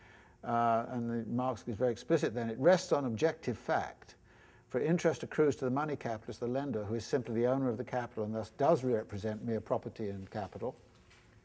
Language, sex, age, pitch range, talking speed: English, male, 60-79, 115-155 Hz, 195 wpm